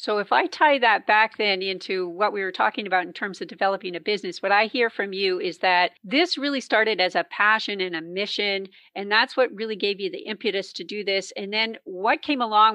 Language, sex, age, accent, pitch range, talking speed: English, female, 40-59, American, 190-230 Hz, 240 wpm